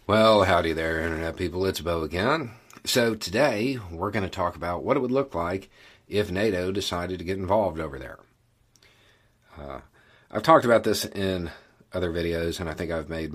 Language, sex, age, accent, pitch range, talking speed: English, male, 40-59, American, 80-100 Hz, 185 wpm